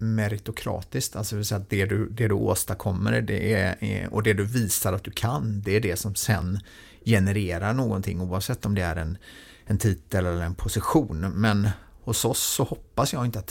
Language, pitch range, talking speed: Swedish, 95-115 Hz, 200 wpm